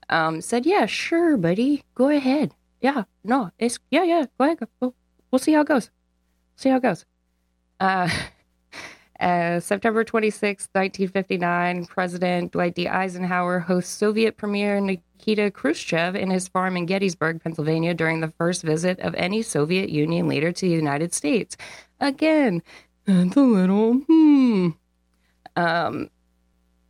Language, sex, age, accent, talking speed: English, female, 20-39, American, 145 wpm